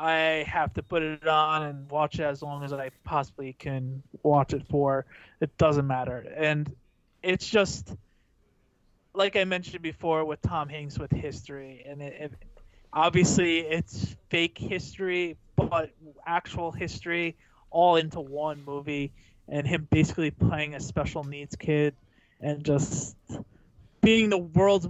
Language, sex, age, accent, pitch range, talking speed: English, male, 20-39, American, 140-165 Hz, 140 wpm